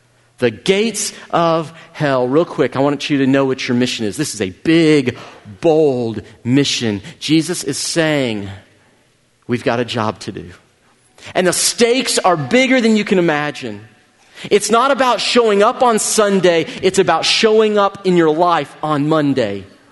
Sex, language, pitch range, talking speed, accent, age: male, English, 140-195 Hz, 165 wpm, American, 40-59